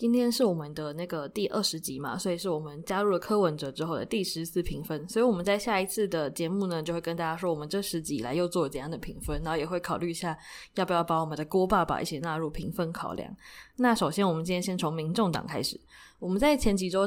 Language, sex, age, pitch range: Chinese, female, 20-39, 160-195 Hz